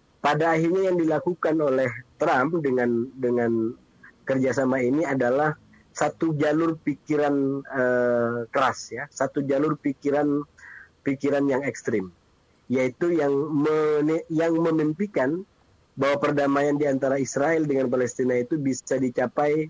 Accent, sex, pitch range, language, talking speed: native, male, 125-155 Hz, Indonesian, 115 wpm